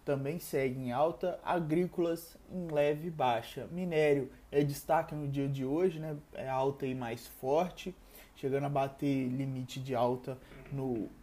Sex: male